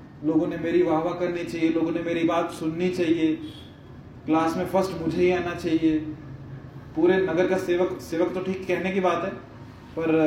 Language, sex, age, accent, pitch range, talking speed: Hindi, male, 20-39, native, 135-180 Hz, 180 wpm